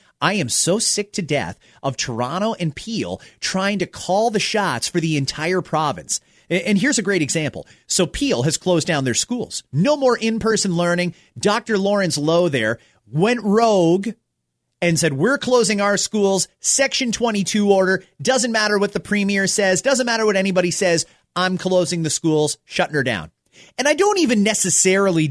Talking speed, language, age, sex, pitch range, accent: 175 wpm, English, 30-49, male, 155-220 Hz, American